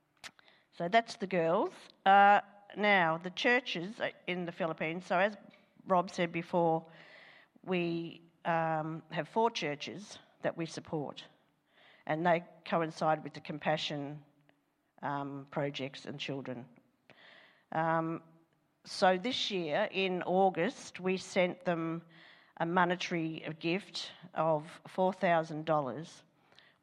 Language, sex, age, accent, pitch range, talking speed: English, female, 50-69, Australian, 155-180 Hz, 105 wpm